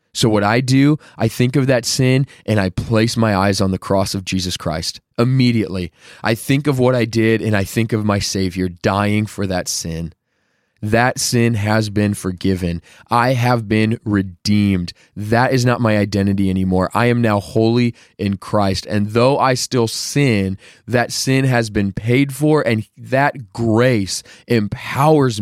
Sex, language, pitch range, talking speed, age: male, English, 100-125 Hz, 170 wpm, 20-39